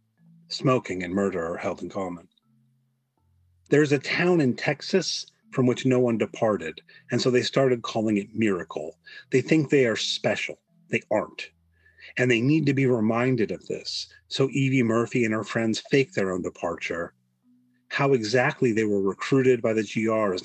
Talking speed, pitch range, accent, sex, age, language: 170 wpm, 100-135 Hz, American, male, 40-59, English